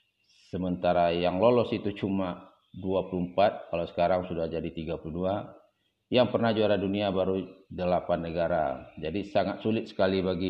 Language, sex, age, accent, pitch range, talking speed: Indonesian, male, 30-49, native, 85-95 Hz, 130 wpm